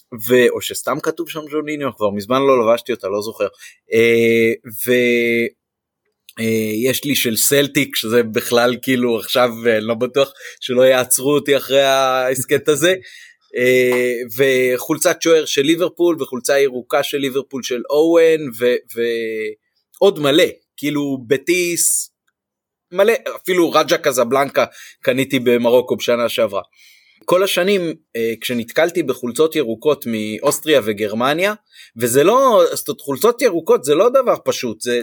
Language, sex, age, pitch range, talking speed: Hebrew, male, 30-49, 120-170 Hz, 120 wpm